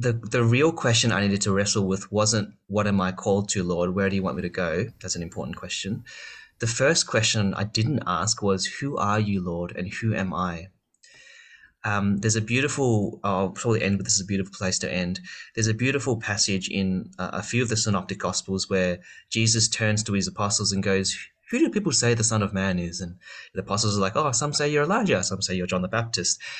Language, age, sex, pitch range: English, 30-49, male, 95-120 Hz